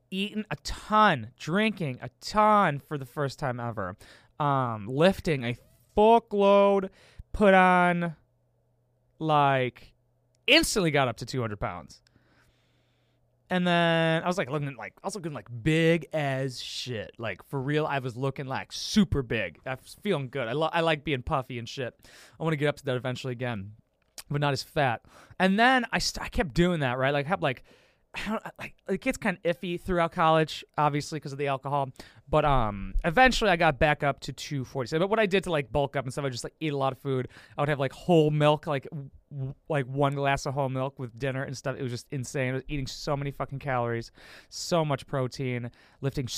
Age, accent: 20-39, American